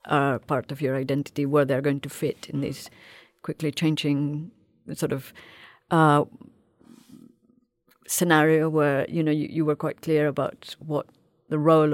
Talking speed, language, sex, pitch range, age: 155 wpm, English, female, 145-170 Hz, 50-69